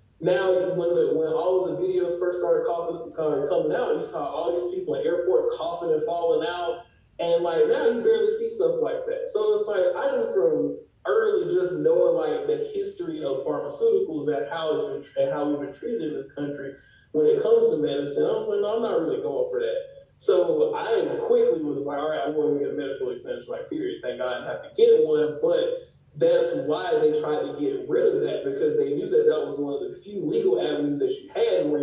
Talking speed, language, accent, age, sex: 240 wpm, English, American, 20-39, male